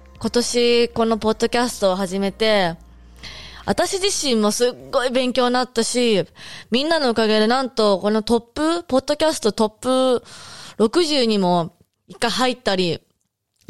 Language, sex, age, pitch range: Japanese, female, 20-39, 185-235 Hz